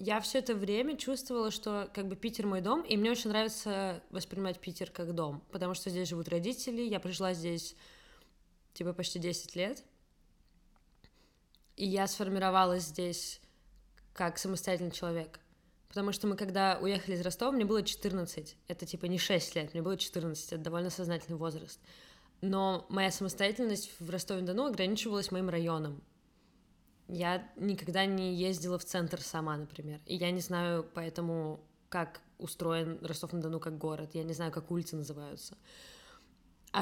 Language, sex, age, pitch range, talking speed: Russian, female, 20-39, 170-200 Hz, 150 wpm